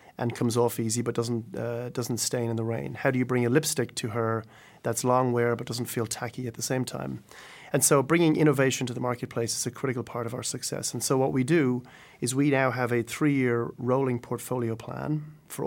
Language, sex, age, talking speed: English, male, 30-49, 235 wpm